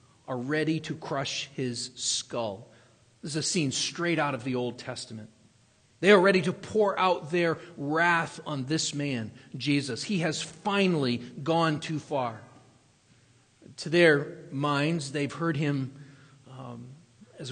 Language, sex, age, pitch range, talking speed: English, male, 40-59, 130-185 Hz, 145 wpm